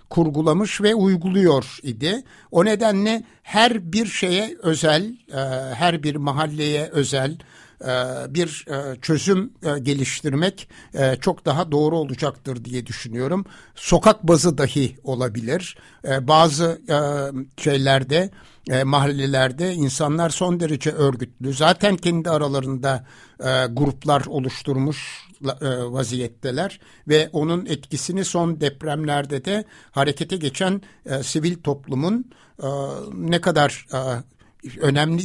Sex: male